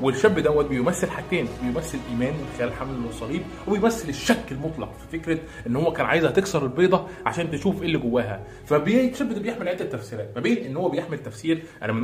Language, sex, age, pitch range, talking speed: Arabic, male, 20-39, 120-170 Hz, 195 wpm